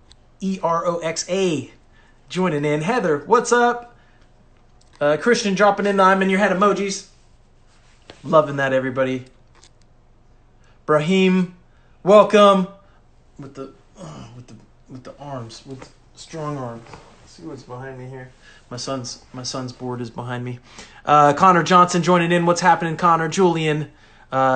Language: English